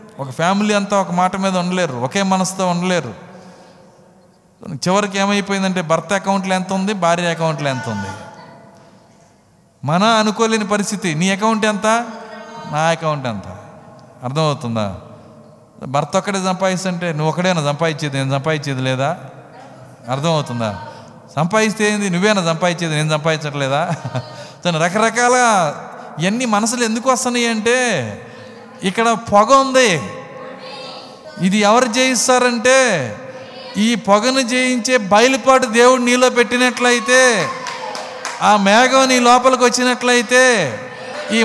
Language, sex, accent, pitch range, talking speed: Telugu, male, native, 165-230 Hz, 105 wpm